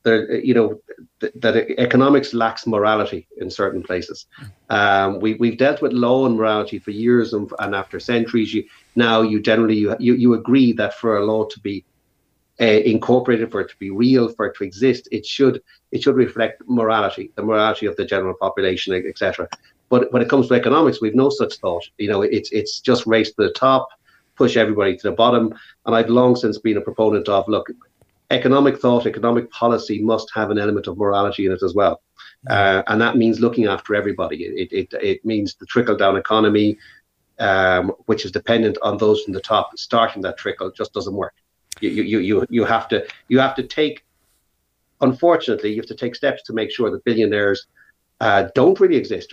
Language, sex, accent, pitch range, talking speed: English, male, Irish, 105-125 Hz, 200 wpm